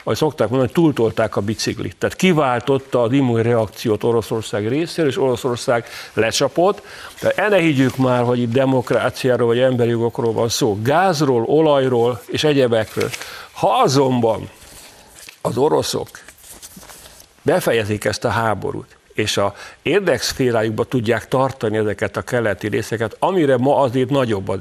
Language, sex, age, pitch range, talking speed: Hungarian, male, 60-79, 115-135 Hz, 130 wpm